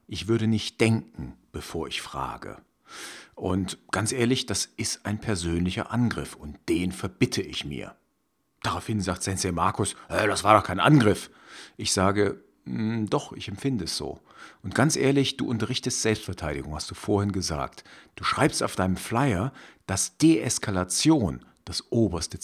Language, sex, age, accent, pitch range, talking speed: German, male, 50-69, German, 90-115 Hz, 145 wpm